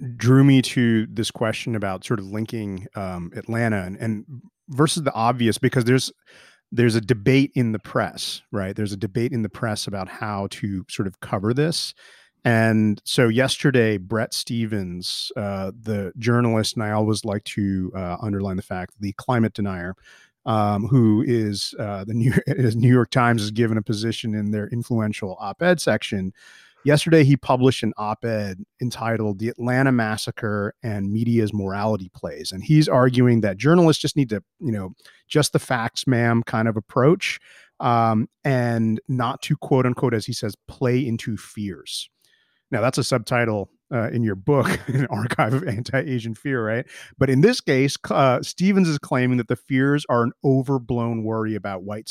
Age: 30-49